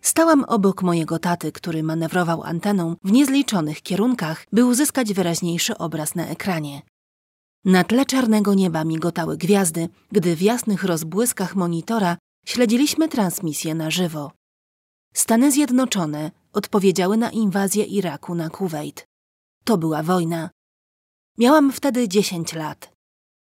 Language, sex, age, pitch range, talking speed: Polish, female, 30-49, 170-230 Hz, 120 wpm